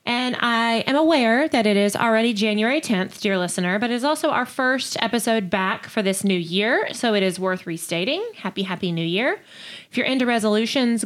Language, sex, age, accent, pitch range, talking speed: English, female, 20-39, American, 185-245 Hz, 200 wpm